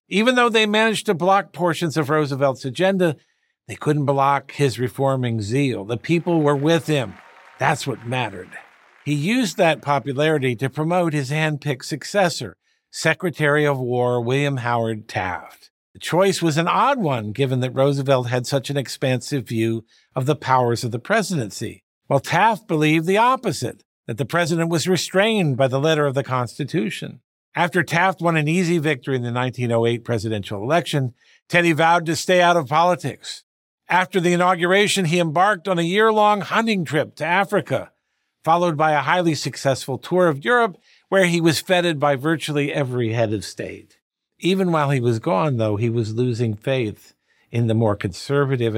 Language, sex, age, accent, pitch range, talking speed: English, male, 50-69, American, 125-175 Hz, 170 wpm